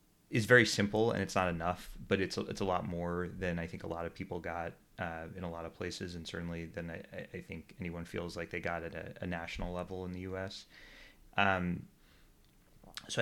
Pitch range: 85-110 Hz